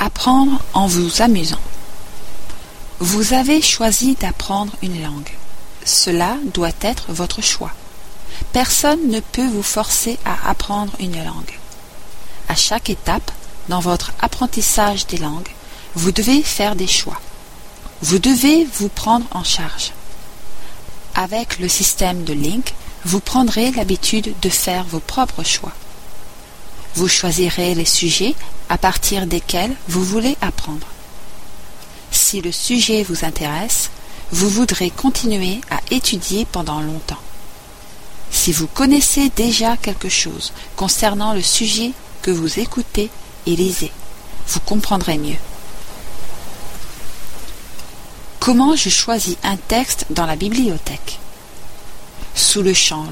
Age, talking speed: 40-59, 120 wpm